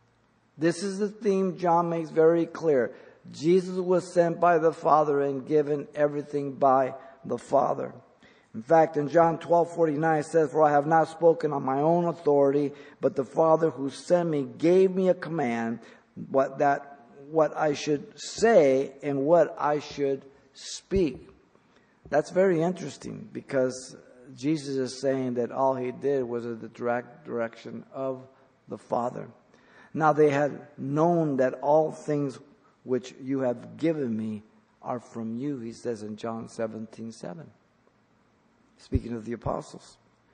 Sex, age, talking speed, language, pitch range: male, 50-69, 155 wpm, English, 130-165 Hz